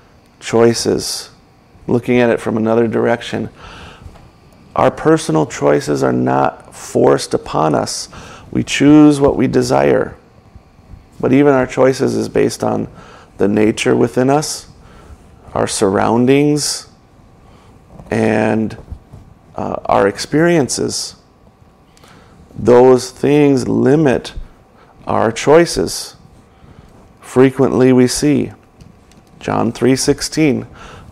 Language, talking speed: English, 90 wpm